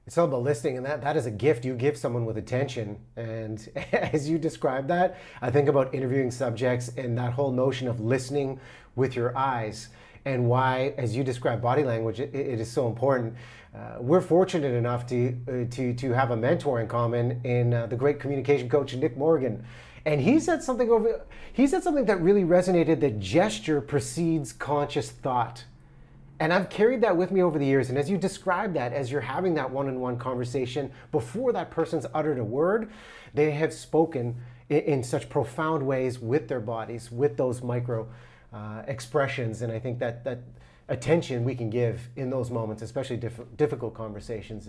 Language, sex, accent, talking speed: English, male, American, 190 wpm